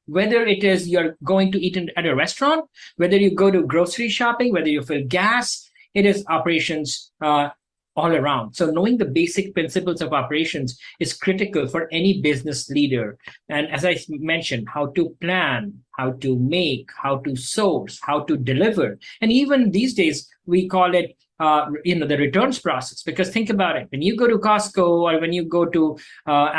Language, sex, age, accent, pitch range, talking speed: English, male, 50-69, Indian, 150-195 Hz, 185 wpm